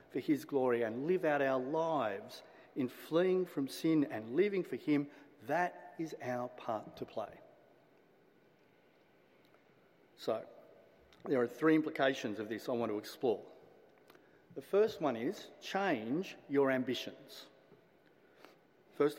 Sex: male